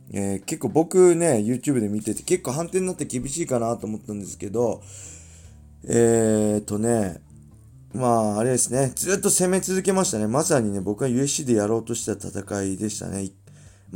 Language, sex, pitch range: Japanese, male, 100-135 Hz